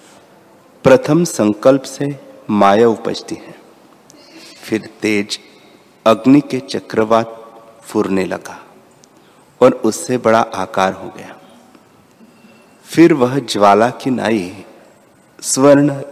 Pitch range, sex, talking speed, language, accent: 105-130 Hz, male, 95 wpm, Hindi, native